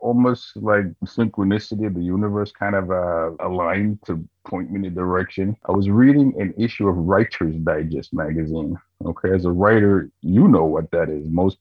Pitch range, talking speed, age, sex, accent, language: 85-115 Hz, 180 wpm, 50-69, male, American, English